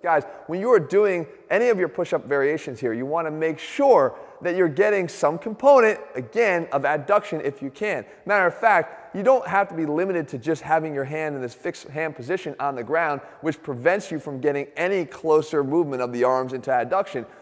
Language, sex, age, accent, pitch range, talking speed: English, male, 30-49, American, 145-195 Hz, 210 wpm